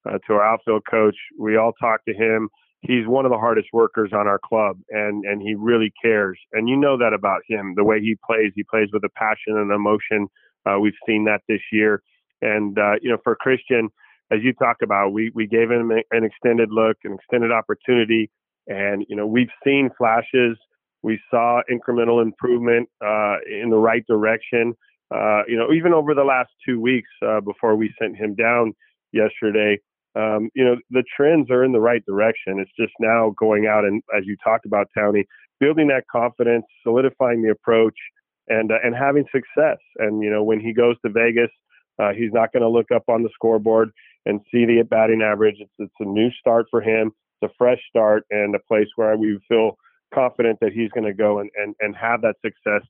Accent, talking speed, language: American, 210 wpm, English